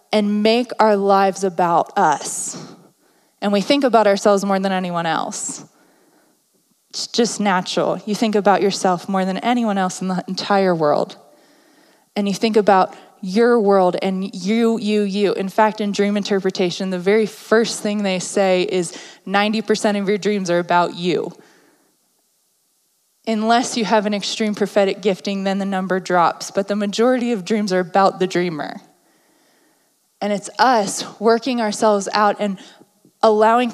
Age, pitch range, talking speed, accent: 20-39, 195-230 Hz, 155 wpm, American